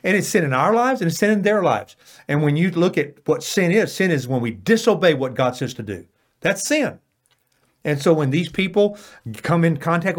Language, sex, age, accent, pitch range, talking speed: English, male, 50-69, American, 130-205 Hz, 235 wpm